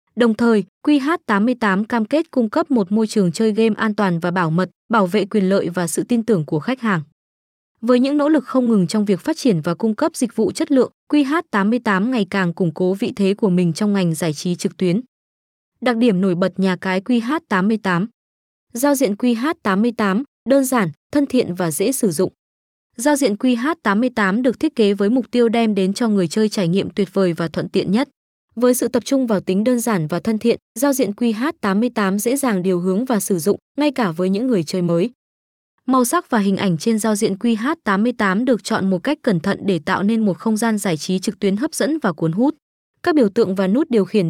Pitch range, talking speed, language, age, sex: 190-245 Hz, 225 wpm, Vietnamese, 20-39, female